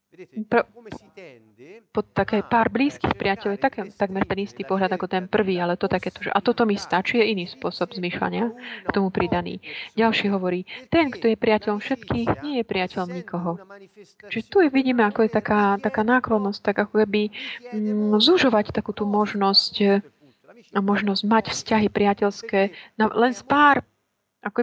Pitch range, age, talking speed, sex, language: 190-235 Hz, 30-49, 165 wpm, female, Slovak